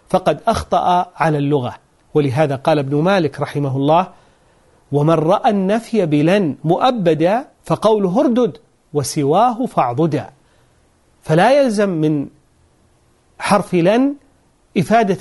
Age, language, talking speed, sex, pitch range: 40-59, Arabic, 100 wpm, male, 150-220 Hz